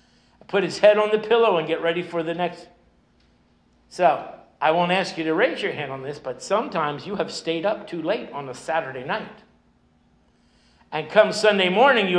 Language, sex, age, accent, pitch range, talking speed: English, male, 60-79, American, 165-215 Hz, 195 wpm